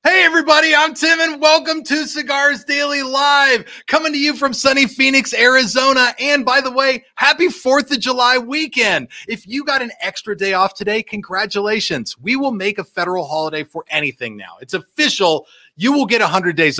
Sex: male